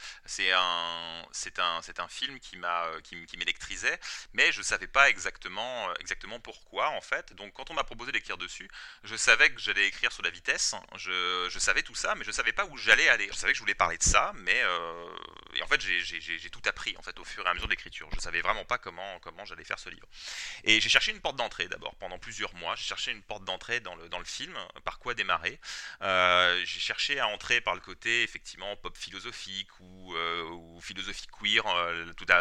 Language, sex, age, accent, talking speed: French, male, 30-49, French, 235 wpm